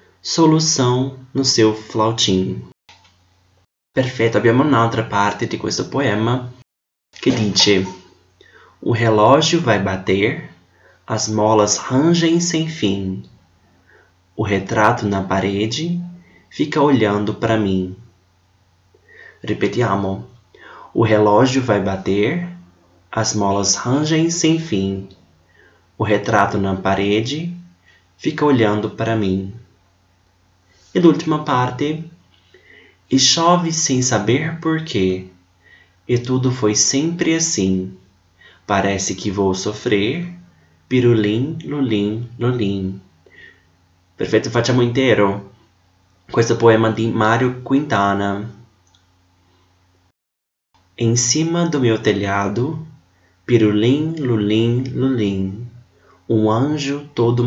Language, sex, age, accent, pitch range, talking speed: Italian, male, 20-39, Brazilian, 95-125 Hz, 95 wpm